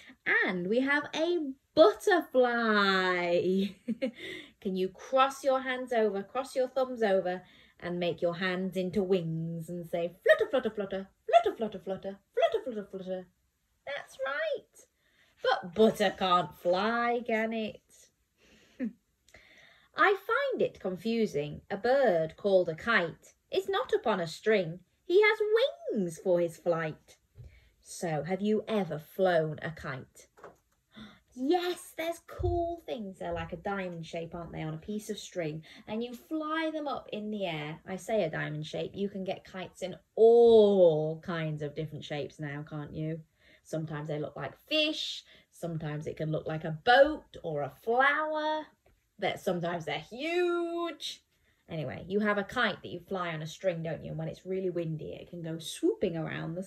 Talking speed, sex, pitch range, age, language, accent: 160 wpm, female, 170-255 Hz, 20-39, English, British